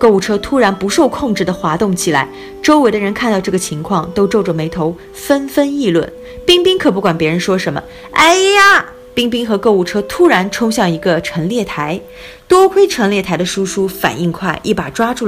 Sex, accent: female, native